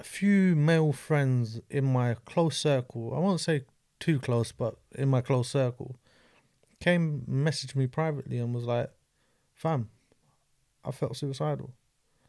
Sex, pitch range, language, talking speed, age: male, 120-145 Hz, English, 135 wpm, 20-39